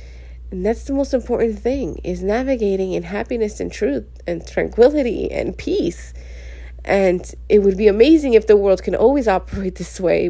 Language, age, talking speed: English, 30-49, 170 wpm